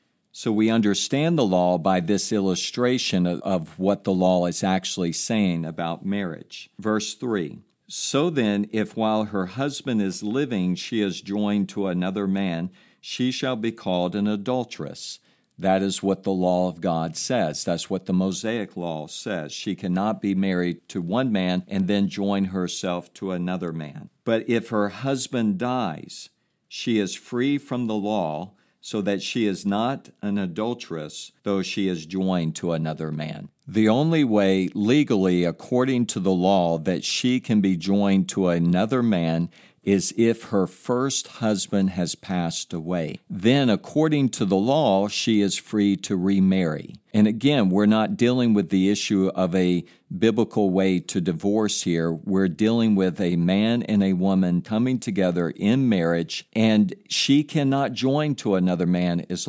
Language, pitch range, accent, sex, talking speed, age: English, 90-110 Hz, American, male, 160 wpm, 50-69